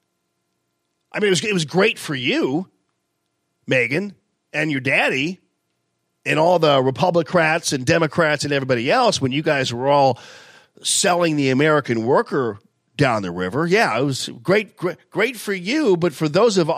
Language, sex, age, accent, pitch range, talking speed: English, male, 40-59, American, 130-175 Hz, 165 wpm